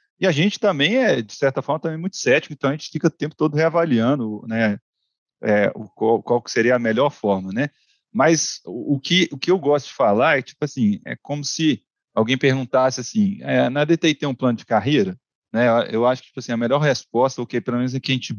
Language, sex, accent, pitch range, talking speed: Portuguese, male, Brazilian, 120-160 Hz, 235 wpm